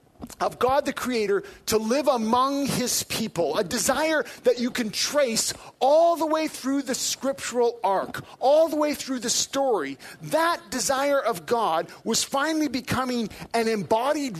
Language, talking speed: English, 155 wpm